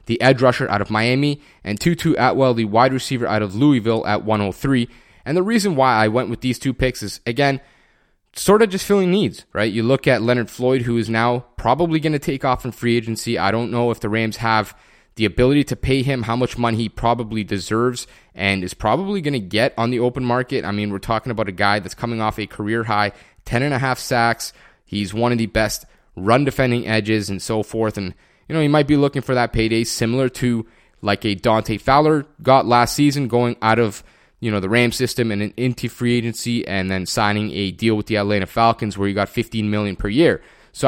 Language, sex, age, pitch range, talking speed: English, male, 20-39, 110-130 Hz, 230 wpm